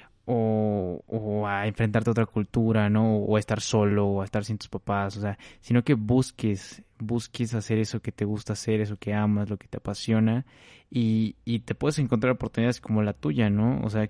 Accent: Mexican